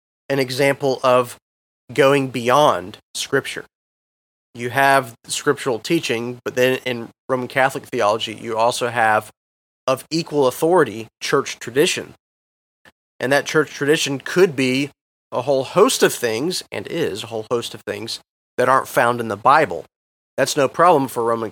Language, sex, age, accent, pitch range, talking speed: English, male, 30-49, American, 110-130 Hz, 150 wpm